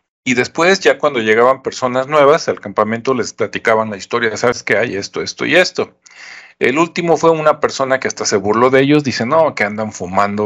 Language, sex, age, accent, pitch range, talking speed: Spanish, male, 40-59, Mexican, 110-140 Hz, 205 wpm